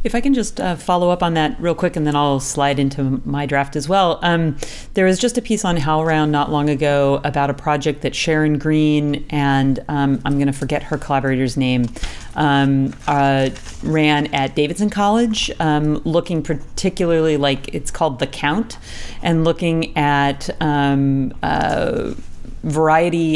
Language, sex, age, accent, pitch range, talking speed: English, female, 40-59, American, 135-160 Hz, 165 wpm